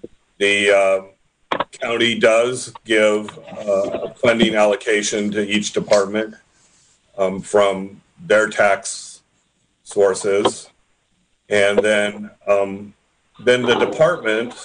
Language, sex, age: English, male, 40-59